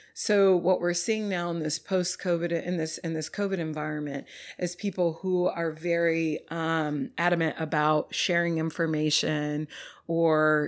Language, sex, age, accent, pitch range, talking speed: English, female, 40-59, American, 165-185 Hz, 140 wpm